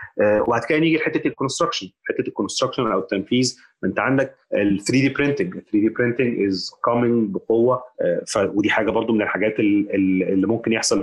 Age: 30-49